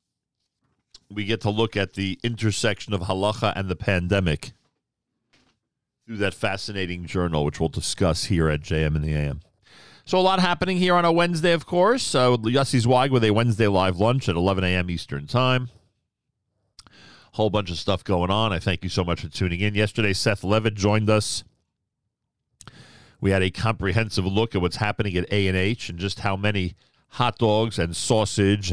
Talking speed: 180 wpm